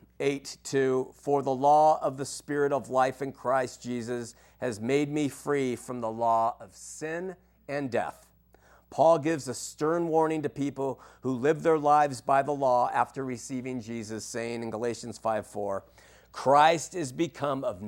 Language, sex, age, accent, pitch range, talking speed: English, male, 50-69, American, 130-180 Hz, 160 wpm